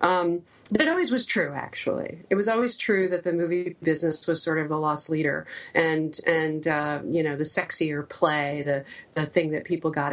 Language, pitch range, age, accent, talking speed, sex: English, 145-170 Hz, 40-59, American, 205 wpm, female